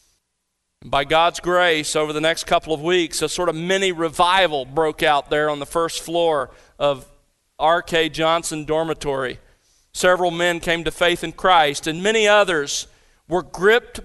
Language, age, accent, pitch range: English, 40-59, American, 155-195 Hz